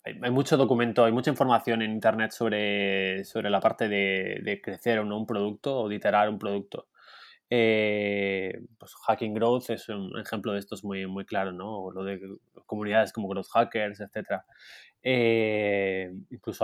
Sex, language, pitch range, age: male, Spanish, 100-120 Hz, 20-39